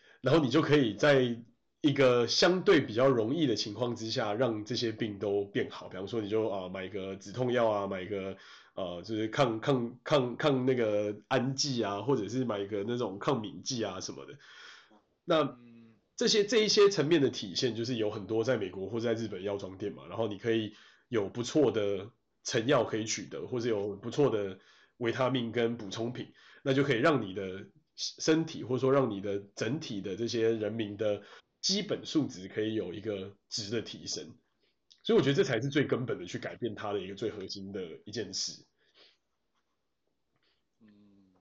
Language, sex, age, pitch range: Chinese, male, 20-39, 105-135 Hz